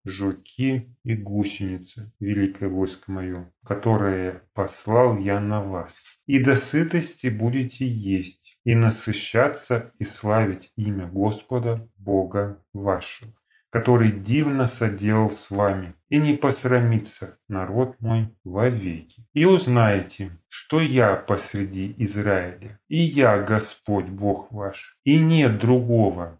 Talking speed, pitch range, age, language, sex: 110 wpm, 100-125 Hz, 30-49, Russian, male